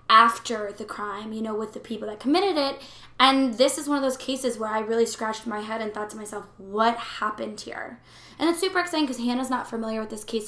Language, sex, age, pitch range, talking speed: English, female, 10-29, 220-245 Hz, 240 wpm